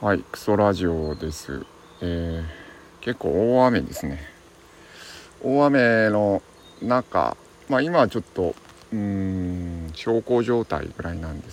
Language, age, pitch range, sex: Japanese, 50-69, 85-115 Hz, male